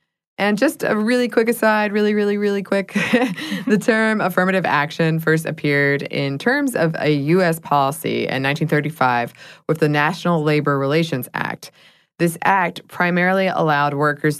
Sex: female